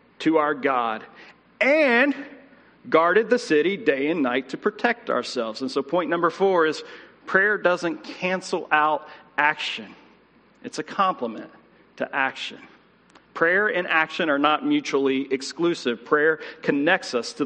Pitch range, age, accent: 145-205 Hz, 40-59, American